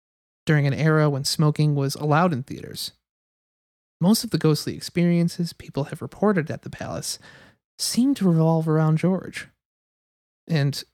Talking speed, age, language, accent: 145 wpm, 30-49, English, American